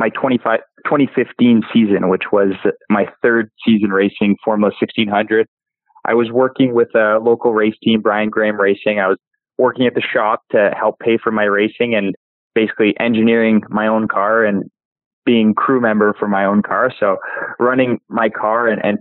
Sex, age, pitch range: male, 20-39, 100-115 Hz